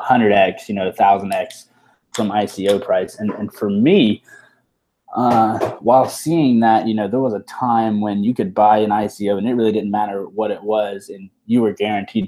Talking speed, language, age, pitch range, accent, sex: 205 wpm, English, 20-39, 105-120 Hz, American, male